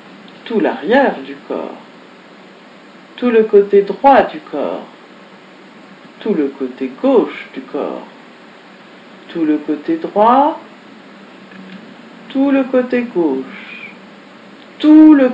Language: French